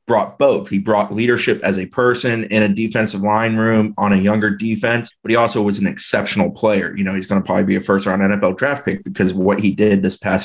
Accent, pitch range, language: American, 100-115 Hz, English